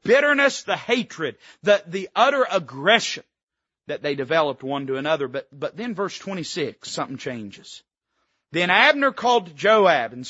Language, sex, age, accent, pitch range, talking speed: English, male, 40-59, American, 155-230 Hz, 150 wpm